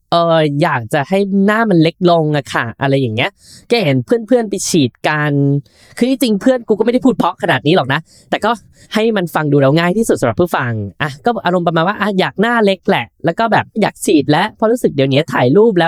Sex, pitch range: female, 145-240 Hz